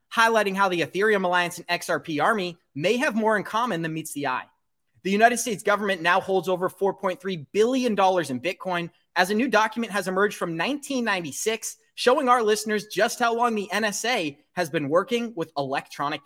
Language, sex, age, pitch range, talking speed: English, male, 30-49, 175-230 Hz, 180 wpm